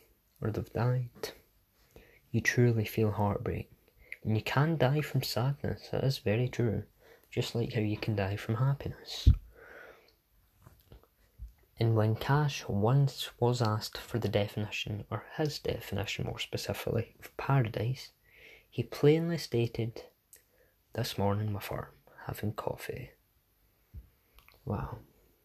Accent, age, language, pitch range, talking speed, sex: British, 20-39, English, 105-130 Hz, 120 wpm, male